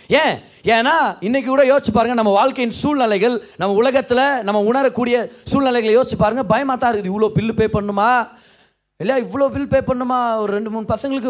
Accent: native